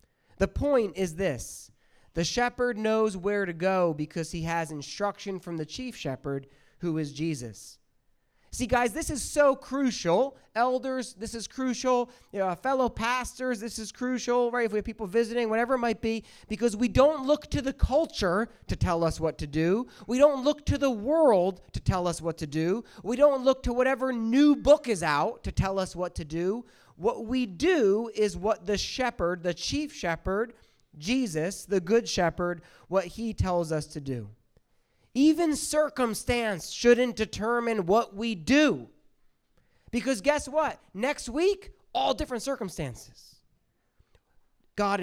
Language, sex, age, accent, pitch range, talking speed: English, male, 30-49, American, 175-255 Hz, 160 wpm